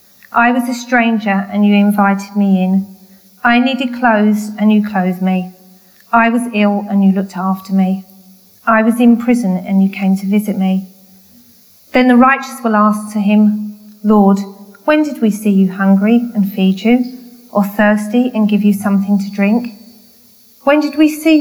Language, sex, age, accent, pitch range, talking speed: English, female, 40-59, British, 195-235 Hz, 175 wpm